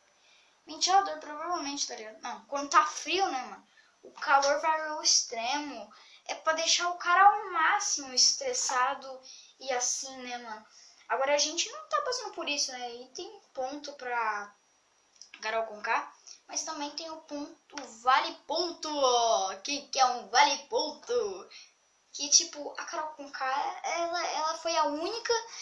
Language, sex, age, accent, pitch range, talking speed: Portuguese, female, 10-29, Brazilian, 240-345 Hz, 155 wpm